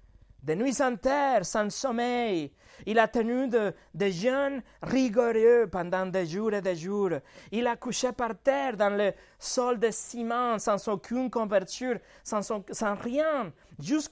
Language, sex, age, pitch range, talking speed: French, male, 30-49, 190-255 Hz, 155 wpm